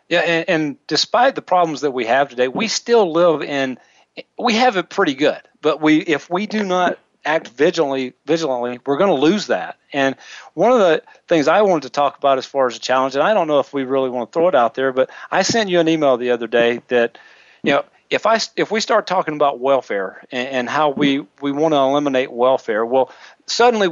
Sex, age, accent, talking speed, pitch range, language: male, 40-59, American, 220 wpm, 130-175 Hz, English